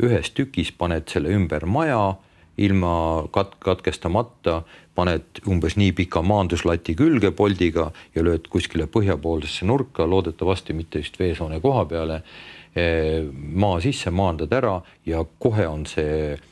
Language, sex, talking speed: English, male, 125 wpm